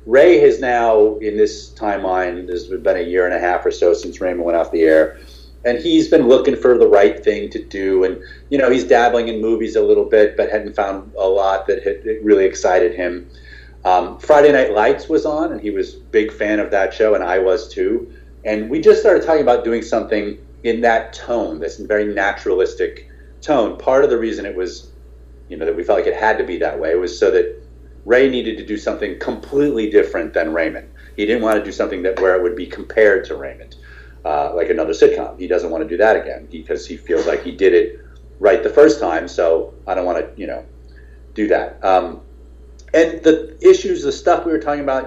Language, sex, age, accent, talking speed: English, male, 30-49, American, 230 wpm